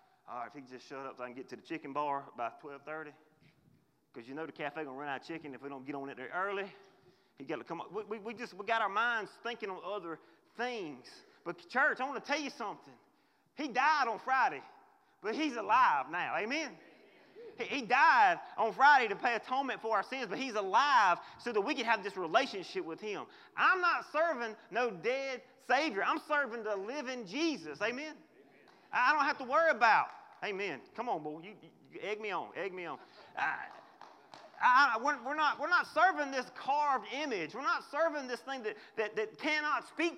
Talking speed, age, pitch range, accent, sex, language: 210 wpm, 30-49, 205-315 Hz, American, male, English